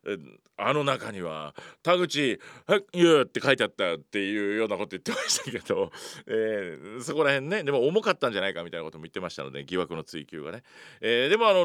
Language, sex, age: Japanese, male, 40-59